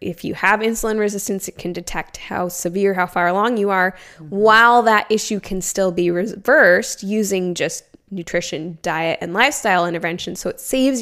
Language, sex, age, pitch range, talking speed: English, female, 20-39, 180-215 Hz, 175 wpm